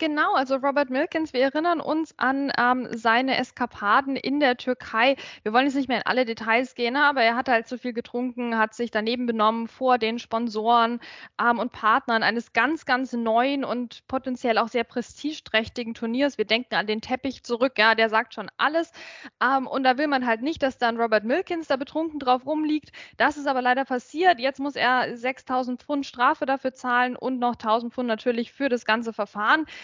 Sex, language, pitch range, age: female, German, 235-290 Hz, 10-29